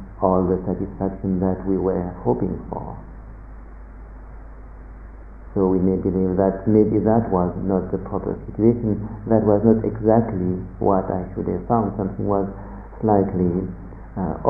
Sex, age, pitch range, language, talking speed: male, 50-69, 95-105 Hz, English, 135 wpm